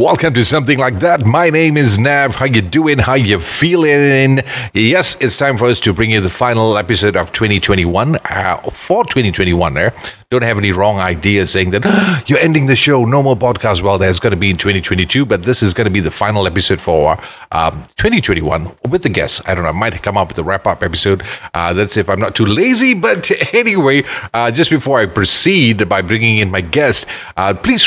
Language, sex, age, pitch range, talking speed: English, male, 40-59, 95-130 Hz, 220 wpm